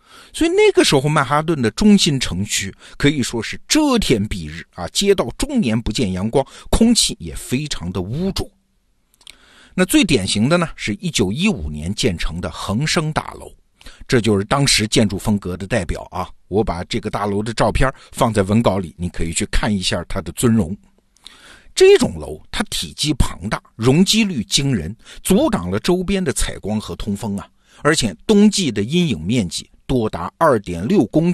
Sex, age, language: male, 50-69, Chinese